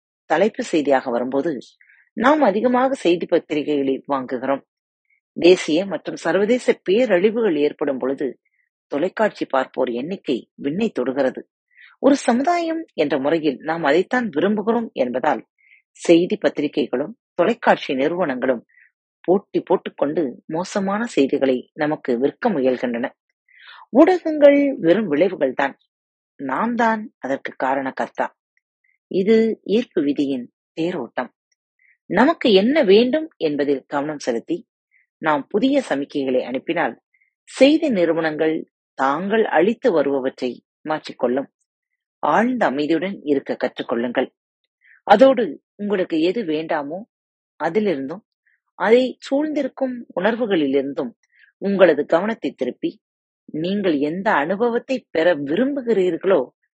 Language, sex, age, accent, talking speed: Tamil, female, 30-49, native, 90 wpm